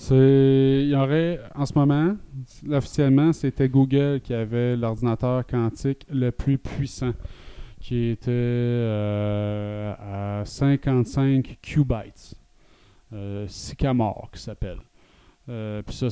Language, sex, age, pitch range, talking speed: French, male, 30-49, 110-135 Hz, 110 wpm